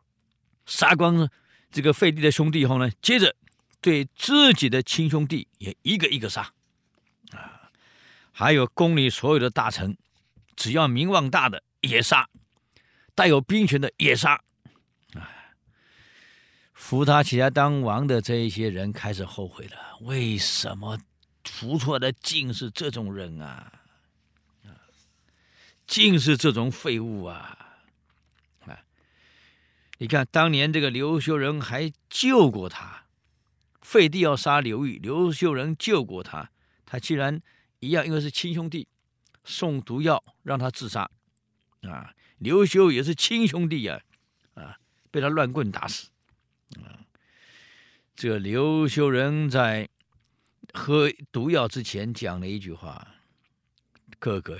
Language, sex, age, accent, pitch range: Chinese, male, 50-69, native, 105-155 Hz